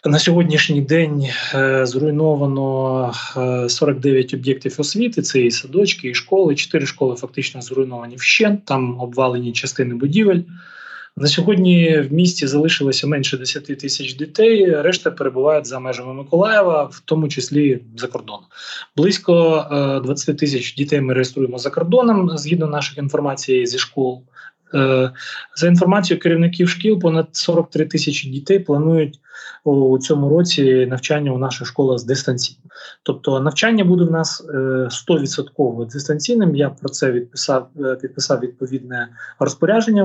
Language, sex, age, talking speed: Ukrainian, male, 20-39, 125 wpm